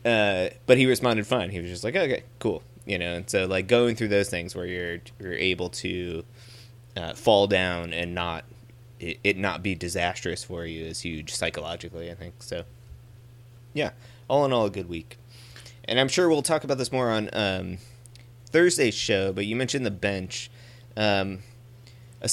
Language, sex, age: English, male, 20-39